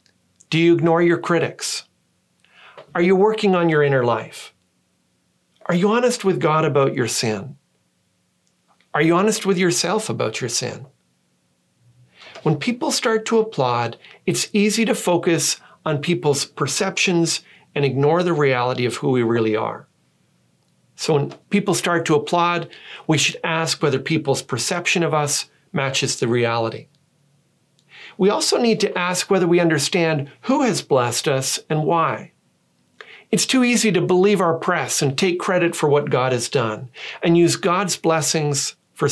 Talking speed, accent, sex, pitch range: 155 wpm, American, male, 130-185 Hz